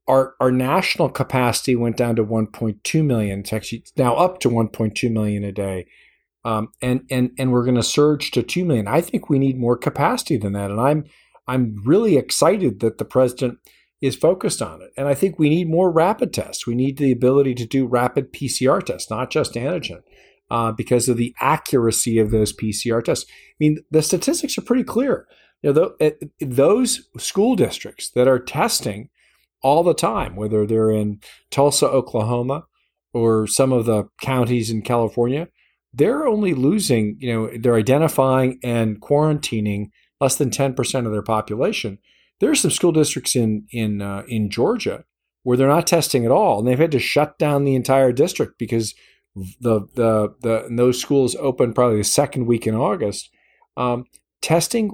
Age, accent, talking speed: 40-59, American, 180 wpm